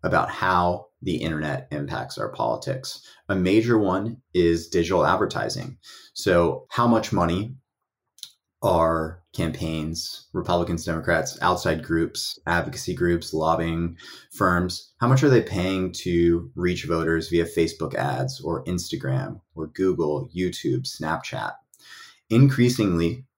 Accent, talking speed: American, 115 wpm